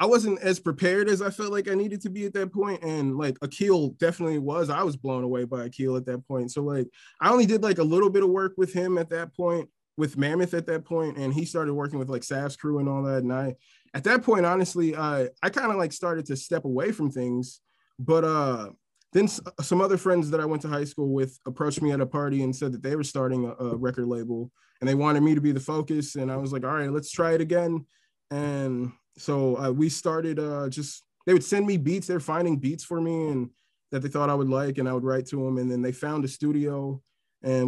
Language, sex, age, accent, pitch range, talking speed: English, male, 20-39, American, 135-175 Hz, 255 wpm